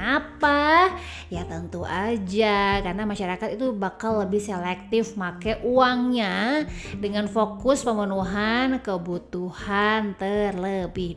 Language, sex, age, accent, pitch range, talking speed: Indonesian, female, 20-39, native, 190-245 Hz, 90 wpm